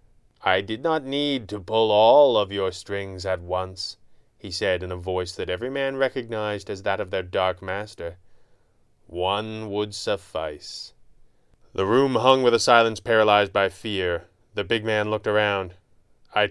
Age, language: 30-49, English